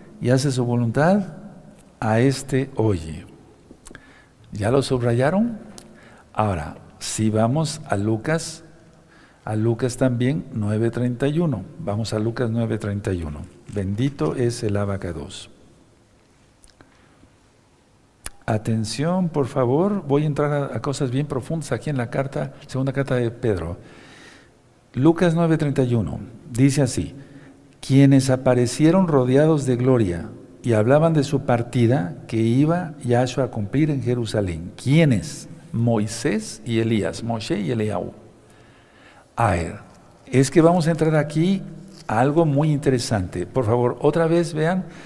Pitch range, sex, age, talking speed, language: 110-150 Hz, male, 60-79, 120 wpm, Spanish